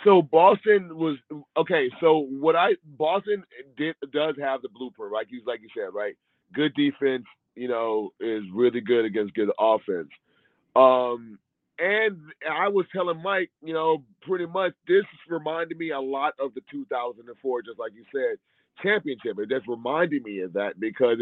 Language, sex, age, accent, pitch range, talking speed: English, male, 30-49, American, 130-185 Hz, 175 wpm